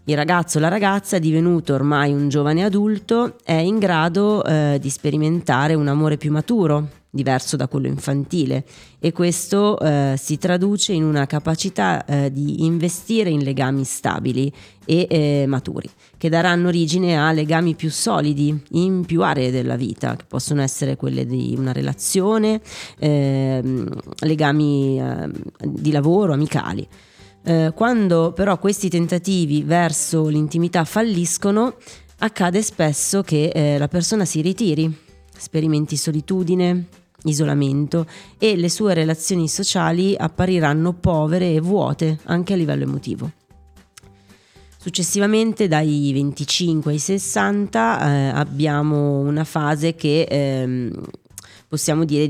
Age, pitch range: 30-49, 145-180 Hz